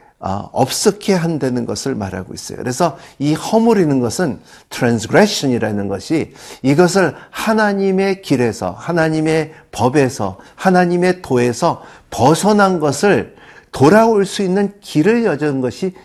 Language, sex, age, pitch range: Korean, male, 50-69, 125-180 Hz